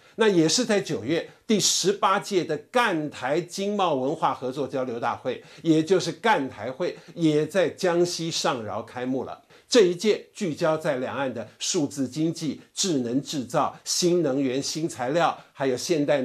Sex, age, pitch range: male, 50-69, 140-190 Hz